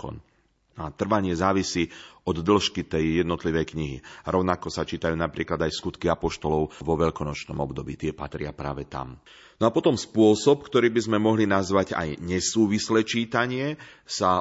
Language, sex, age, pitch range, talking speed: Slovak, male, 40-59, 80-95 Hz, 150 wpm